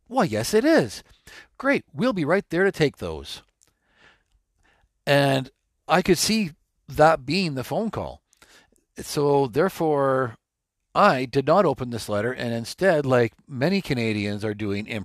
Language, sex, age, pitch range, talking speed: English, male, 50-69, 110-150 Hz, 150 wpm